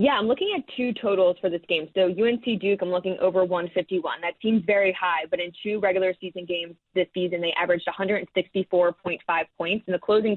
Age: 20-39